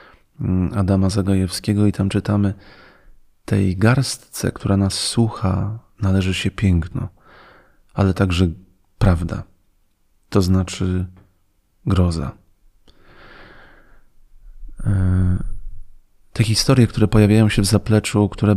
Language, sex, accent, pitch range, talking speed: Polish, male, native, 95-105 Hz, 85 wpm